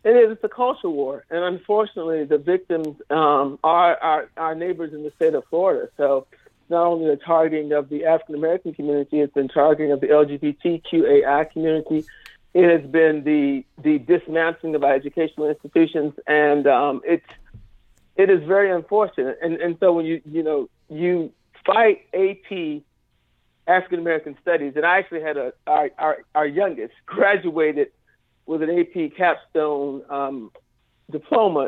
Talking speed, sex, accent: 155 wpm, male, American